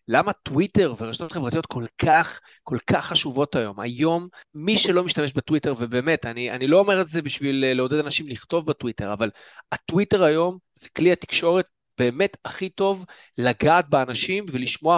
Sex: male